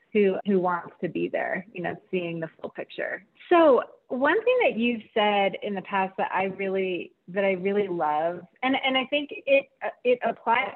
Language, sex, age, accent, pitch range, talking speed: English, female, 30-49, American, 180-225 Hz, 195 wpm